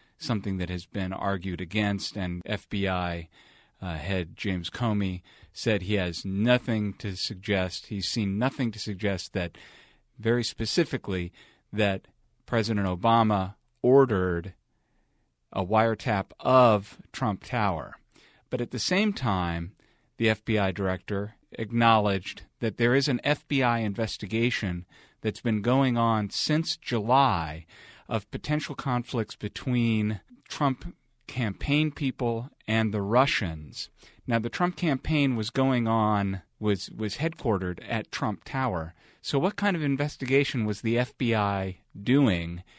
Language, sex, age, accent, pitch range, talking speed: English, male, 40-59, American, 100-125 Hz, 125 wpm